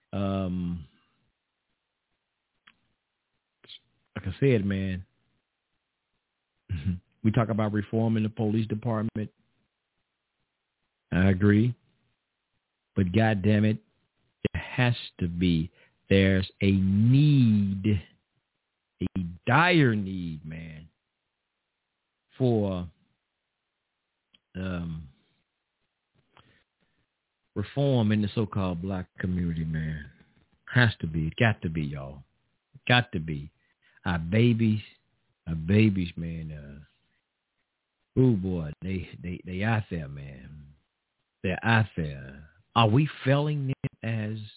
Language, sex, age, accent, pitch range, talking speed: English, male, 50-69, American, 90-115 Hz, 95 wpm